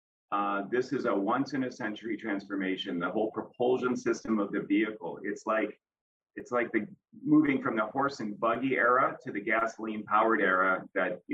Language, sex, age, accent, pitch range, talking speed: English, male, 30-49, American, 100-115 Hz, 165 wpm